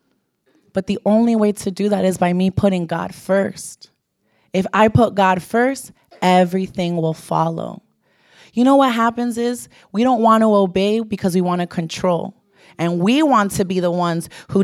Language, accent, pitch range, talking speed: English, American, 185-245 Hz, 180 wpm